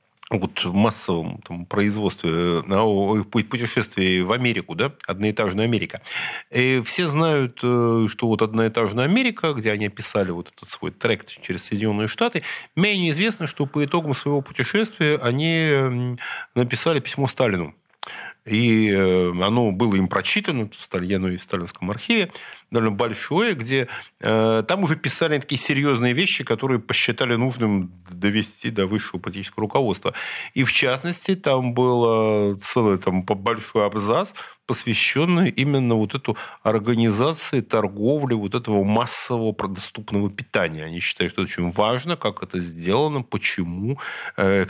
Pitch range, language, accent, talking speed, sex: 100-135 Hz, Russian, native, 135 wpm, male